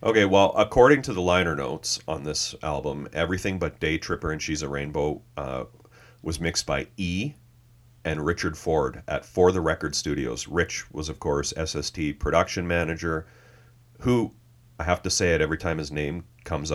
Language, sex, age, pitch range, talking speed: English, male, 30-49, 80-115 Hz, 175 wpm